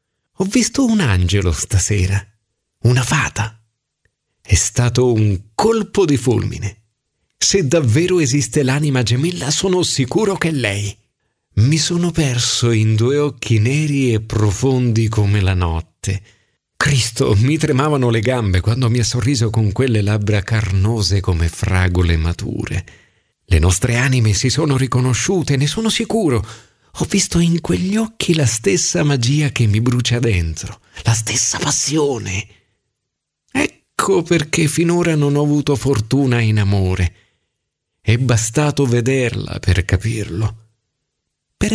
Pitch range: 105-150 Hz